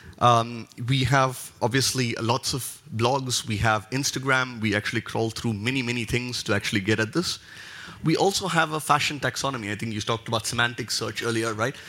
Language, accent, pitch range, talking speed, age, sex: English, Indian, 115-135 Hz, 185 wpm, 30-49, male